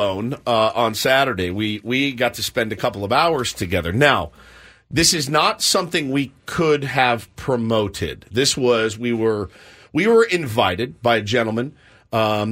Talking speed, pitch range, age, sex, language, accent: 160 wpm, 115-150 Hz, 50-69, male, English, American